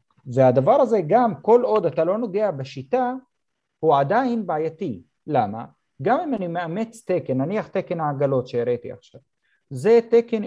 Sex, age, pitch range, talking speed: male, 40-59, 130-195 Hz, 145 wpm